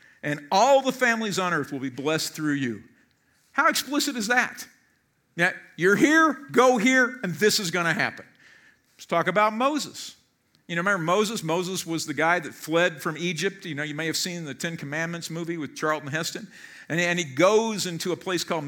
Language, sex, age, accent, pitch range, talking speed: English, male, 50-69, American, 155-210 Hz, 200 wpm